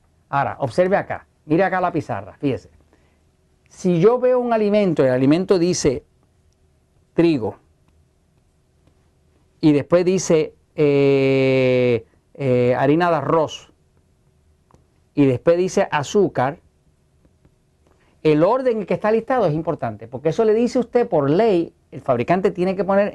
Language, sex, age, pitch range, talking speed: Spanish, male, 50-69, 135-205 Hz, 130 wpm